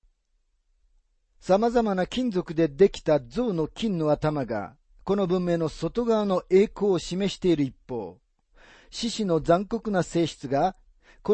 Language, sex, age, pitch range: Japanese, male, 40-59, 120-195 Hz